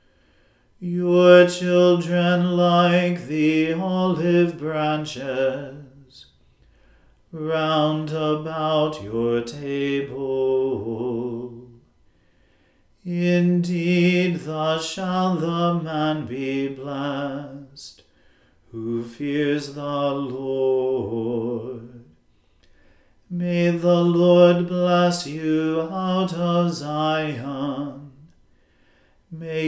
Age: 40-59